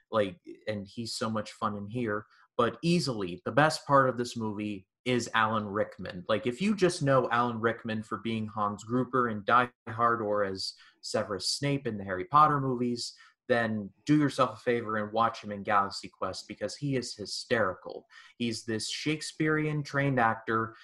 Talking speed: 175 wpm